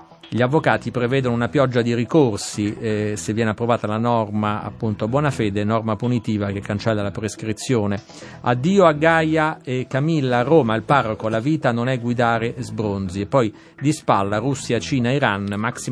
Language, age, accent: Italian, 50-69, native